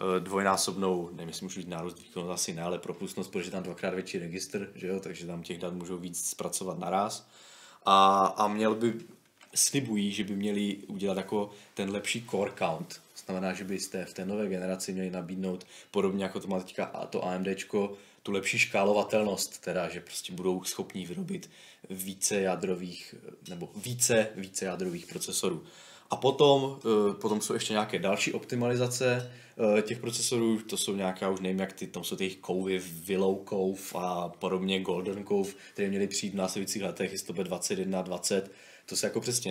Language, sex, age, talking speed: Czech, male, 20-39, 170 wpm